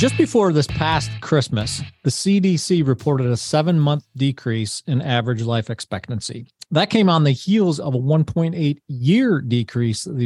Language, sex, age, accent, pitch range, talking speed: English, male, 40-59, American, 120-155 Hz, 145 wpm